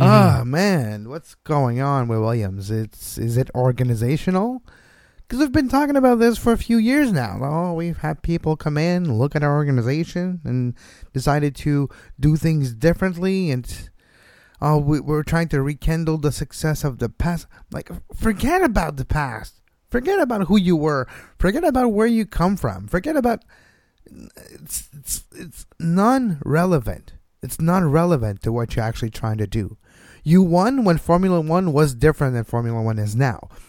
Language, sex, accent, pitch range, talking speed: English, male, American, 125-175 Hz, 165 wpm